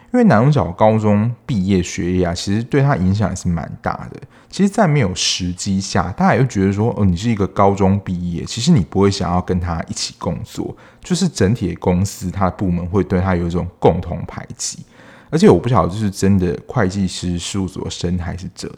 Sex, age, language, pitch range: male, 20-39, Chinese, 90-120 Hz